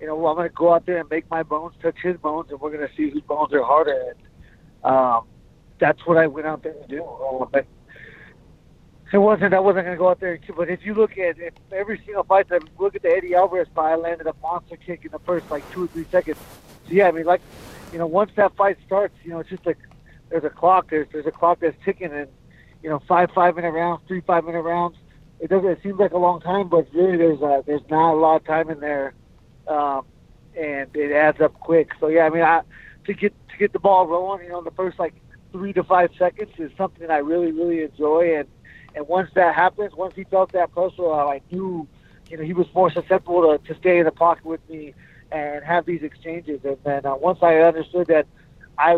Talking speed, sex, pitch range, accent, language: 245 wpm, male, 155-180 Hz, American, English